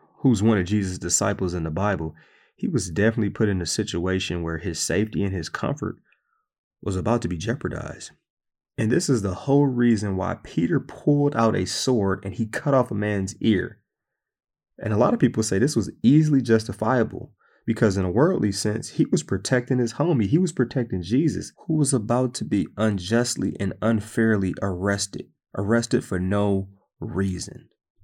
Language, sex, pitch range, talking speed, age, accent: English, male, 95-120 Hz, 175 wpm, 30-49, American